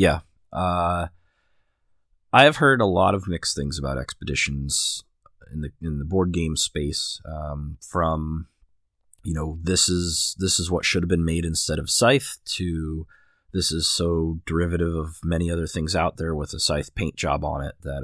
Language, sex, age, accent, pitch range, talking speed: English, male, 30-49, American, 80-95 Hz, 175 wpm